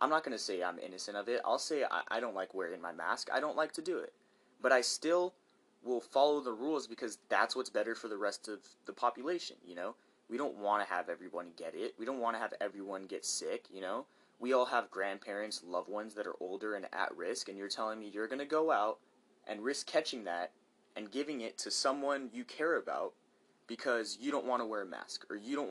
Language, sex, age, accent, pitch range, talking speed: English, male, 20-39, American, 105-135 Hz, 245 wpm